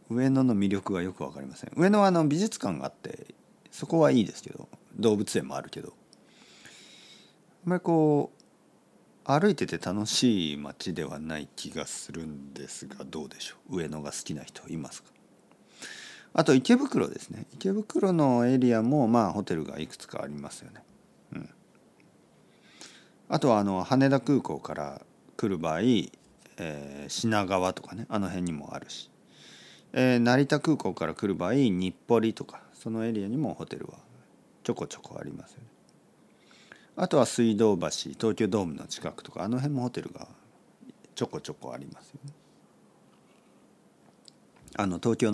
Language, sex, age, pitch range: Japanese, male, 50-69, 90-145 Hz